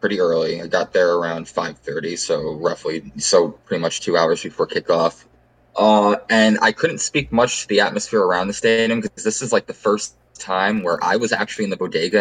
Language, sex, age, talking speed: English, male, 20-39, 210 wpm